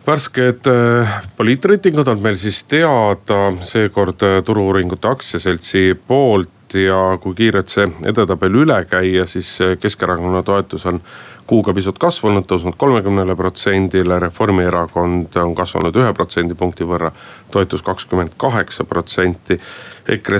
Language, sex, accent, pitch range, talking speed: Finnish, male, native, 90-110 Hz, 105 wpm